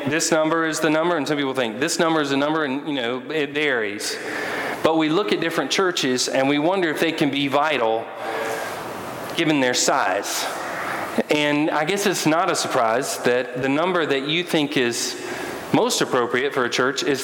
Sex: male